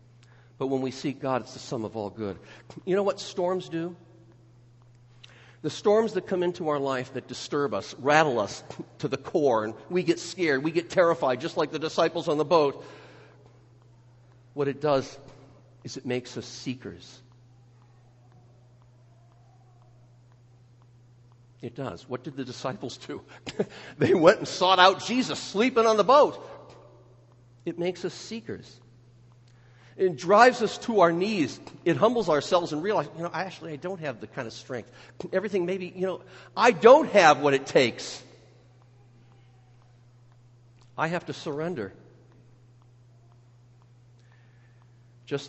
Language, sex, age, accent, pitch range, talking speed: English, male, 50-69, American, 120-150 Hz, 145 wpm